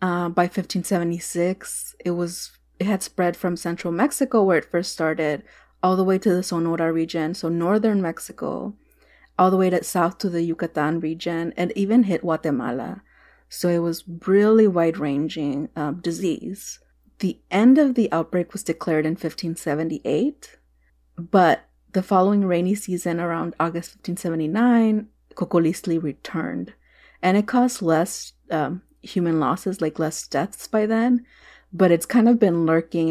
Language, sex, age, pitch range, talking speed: English, female, 30-49, 165-195 Hz, 150 wpm